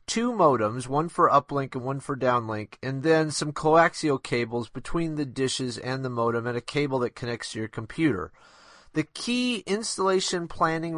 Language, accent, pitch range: English, American, 125-165 Hz